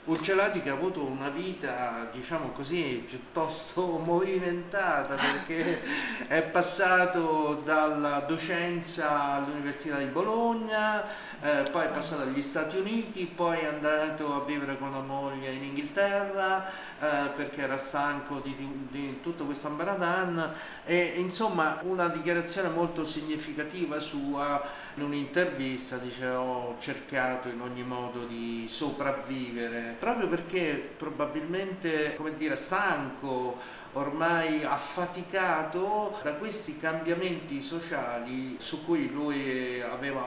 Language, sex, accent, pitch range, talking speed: Italian, male, native, 130-180 Hz, 115 wpm